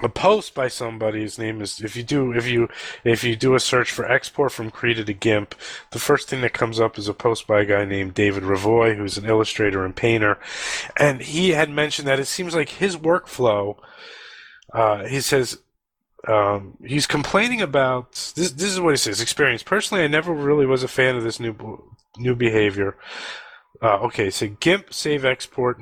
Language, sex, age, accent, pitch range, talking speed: English, male, 30-49, American, 105-135 Hz, 200 wpm